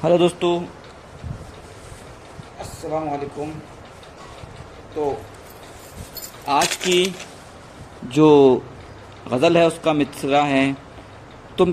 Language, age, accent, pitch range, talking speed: Hindi, 50-69, native, 130-160 Hz, 65 wpm